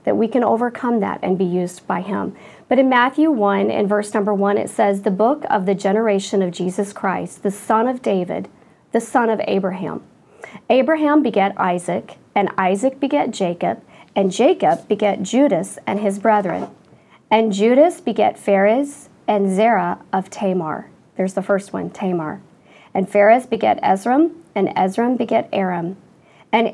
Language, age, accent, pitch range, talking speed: English, 40-59, American, 195-230 Hz, 160 wpm